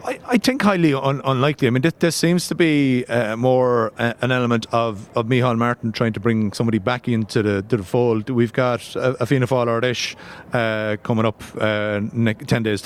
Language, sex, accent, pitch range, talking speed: English, male, Irish, 110-130 Hz, 200 wpm